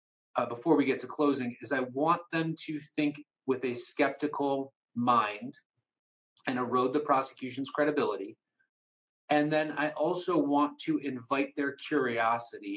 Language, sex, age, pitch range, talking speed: English, male, 30-49, 130-155 Hz, 140 wpm